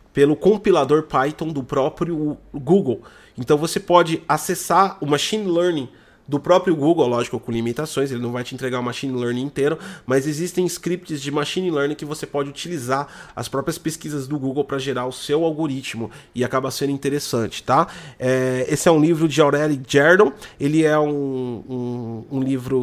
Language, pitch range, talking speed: Portuguese, 125-150 Hz, 170 wpm